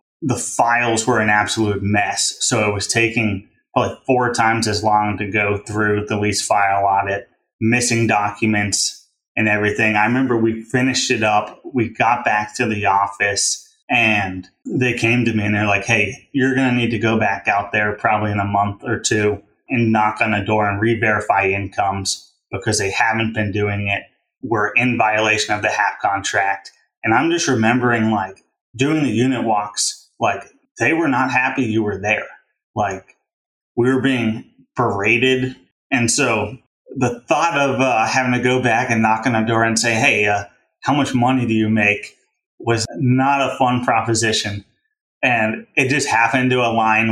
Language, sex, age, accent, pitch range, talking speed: English, male, 20-39, American, 105-120 Hz, 180 wpm